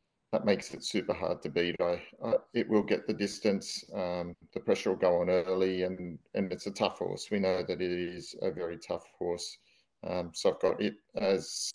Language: English